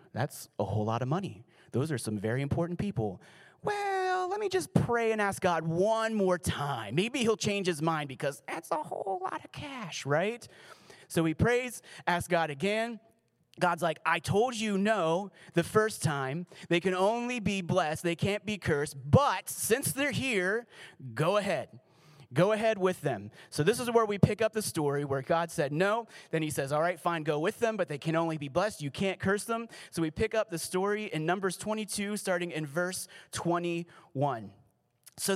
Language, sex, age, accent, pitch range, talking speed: English, male, 30-49, American, 155-205 Hz, 195 wpm